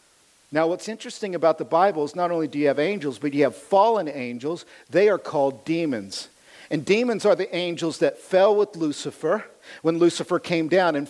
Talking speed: 195 wpm